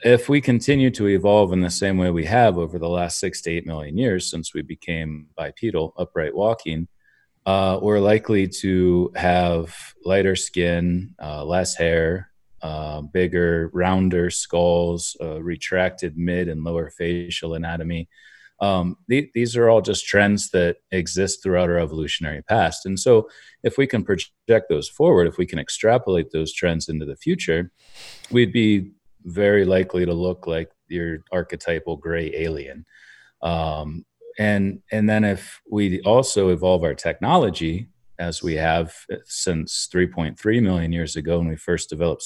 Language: English